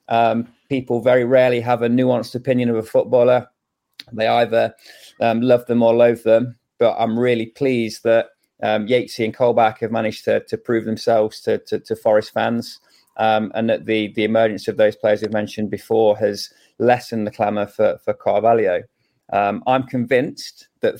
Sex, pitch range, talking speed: male, 105-120 Hz, 175 wpm